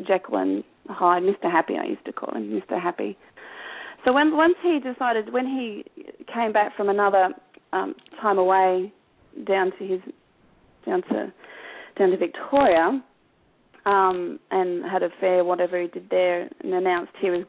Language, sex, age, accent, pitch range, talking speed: English, female, 40-59, Australian, 185-255 Hz, 160 wpm